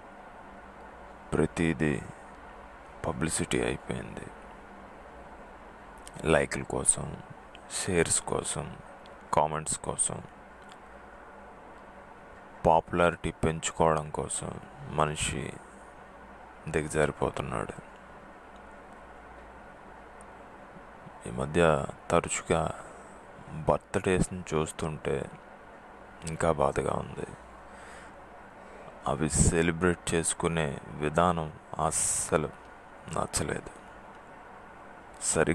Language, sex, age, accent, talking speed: Telugu, male, 20-39, native, 40 wpm